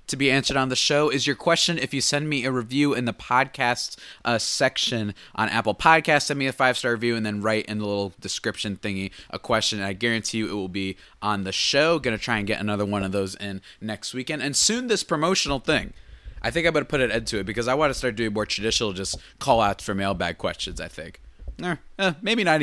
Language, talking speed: English, 250 wpm